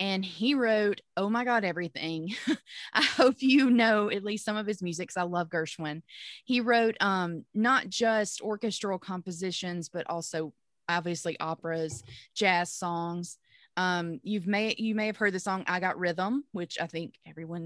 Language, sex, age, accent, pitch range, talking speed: English, female, 20-39, American, 175-235 Hz, 160 wpm